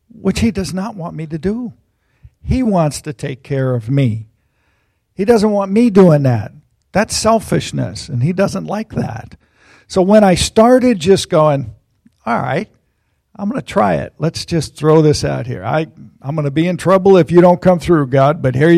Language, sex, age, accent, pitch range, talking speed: English, male, 50-69, American, 130-185 Hz, 195 wpm